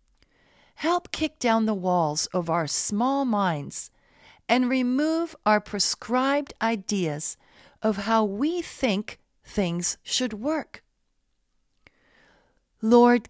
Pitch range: 170-240 Hz